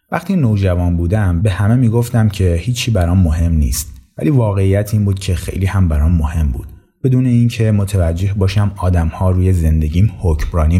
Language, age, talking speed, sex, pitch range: Persian, 30-49, 180 wpm, male, 85-105 Hz